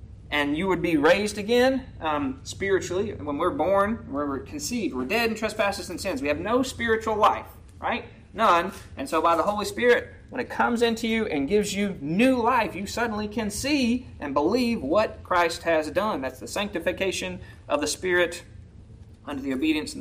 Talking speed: 185 wpm